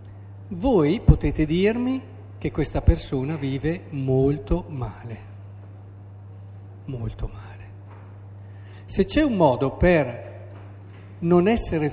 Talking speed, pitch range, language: 90 wpm, 100-155 Hz, Italian